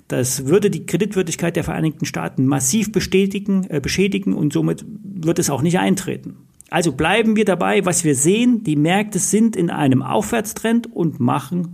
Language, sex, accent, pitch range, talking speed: German, male, German, 145-195 Hz, 170 wpm